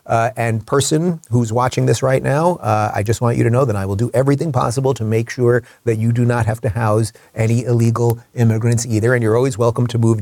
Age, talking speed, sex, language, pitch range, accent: 40-59, 240 wpm, male, English, 110-145 Hz, American